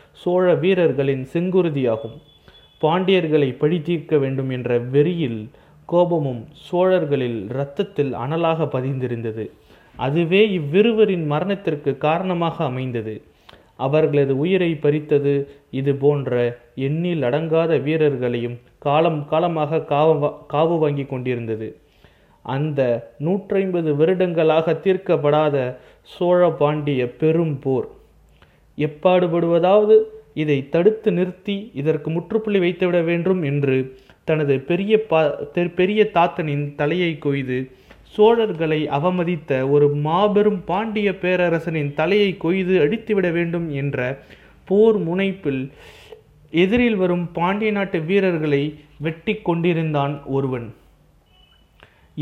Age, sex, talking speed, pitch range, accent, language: 30-49, male, 85 wpm, 140-180 Hz, native, Tamil